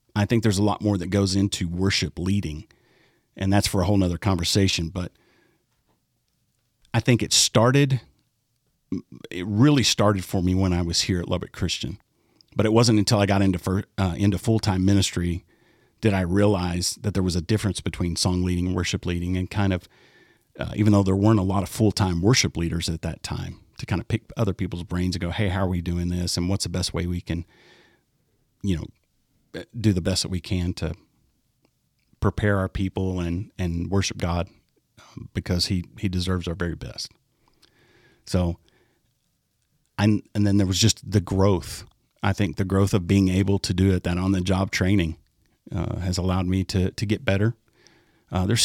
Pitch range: 90-105 Hz